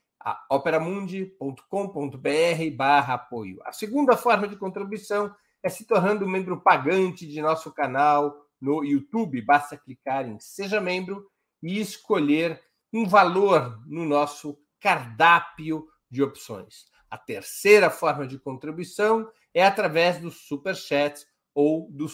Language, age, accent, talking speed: Portuguese, 50-69, Brazilian, 120 wpm